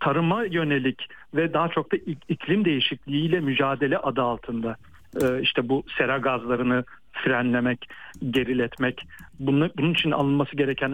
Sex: male